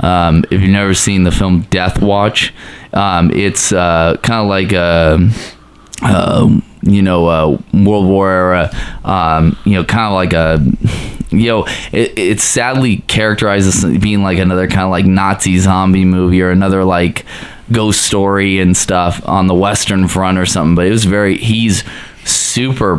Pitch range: 90-105 Hz